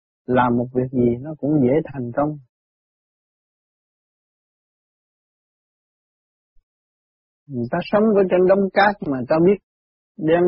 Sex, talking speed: male, 115 wpm